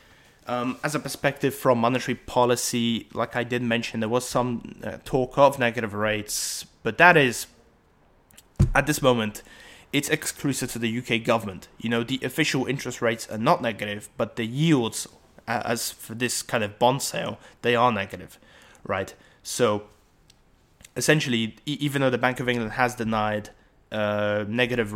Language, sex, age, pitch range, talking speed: English, male, 20-39, 110-125 Hz, 160 wpm